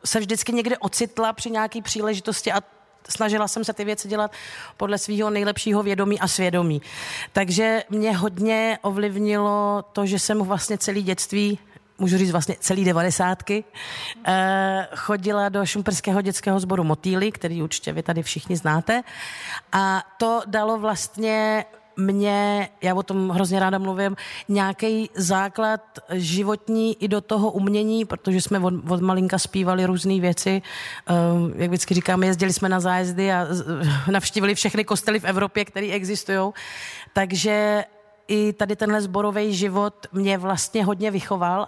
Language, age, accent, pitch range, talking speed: Czech, 40-59, native, 185-210 Hz, 145 wpm